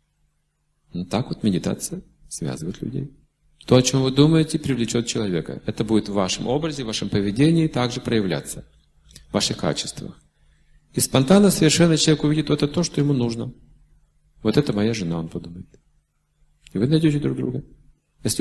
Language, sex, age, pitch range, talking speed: Russian, male, 40-59, 95-145 Hz, 160 wpm